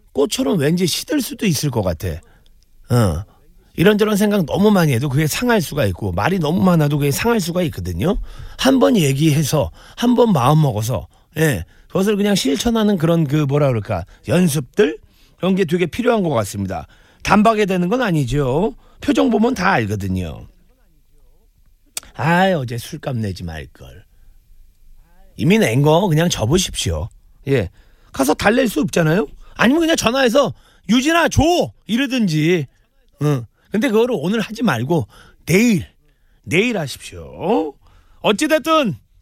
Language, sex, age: Korean, male, 40-59